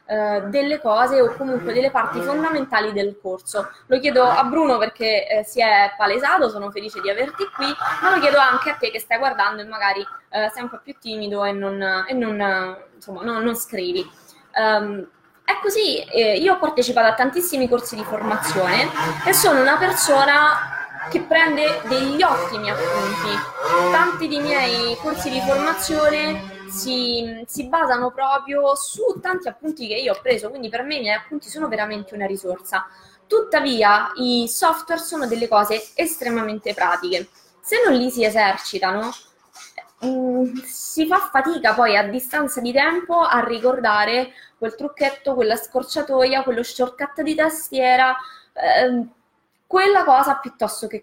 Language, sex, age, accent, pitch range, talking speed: Italian, female, 20-39, native, 215-300 Hz, 150 wpm